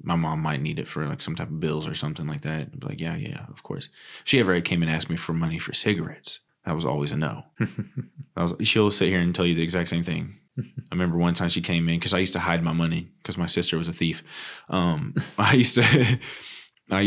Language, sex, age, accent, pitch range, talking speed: English, male, 20-39, American, 85-95 Hz, 260 wpm